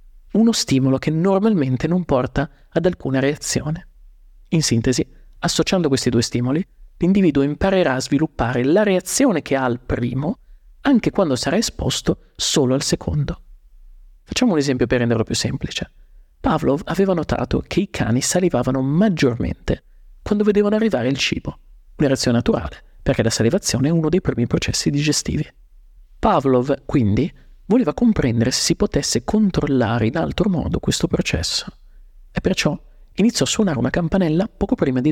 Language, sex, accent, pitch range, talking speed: Italian, male, native, 125-180 Hz, 150 wpm